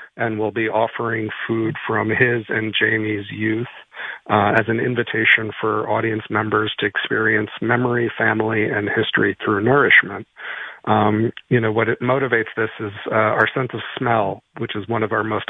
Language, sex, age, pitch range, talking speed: English, male, 40-59, 105-115 Hz, 170 wpm